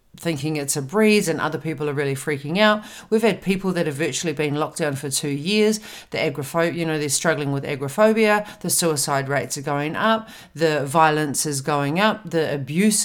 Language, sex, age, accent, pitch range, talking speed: English, female, 40-59, Australian, 155-205 Hz, 200 wpm